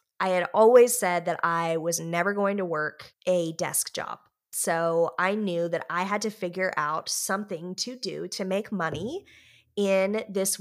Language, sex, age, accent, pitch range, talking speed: English, female, 20-39, American, 175-220 Hz, 175 wpm